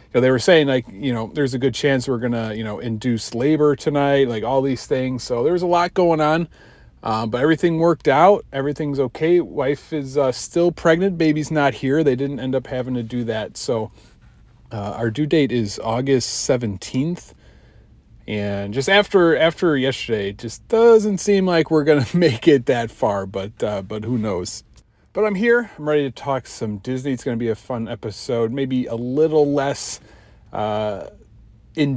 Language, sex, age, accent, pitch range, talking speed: English, male, 40-59, American, 120-165 Hz, 195 wpm